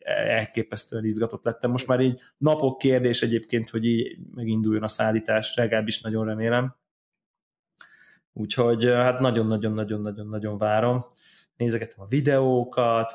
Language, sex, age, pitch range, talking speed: Hungarian, male, 20-39, 115-130 Hz, 115 wpm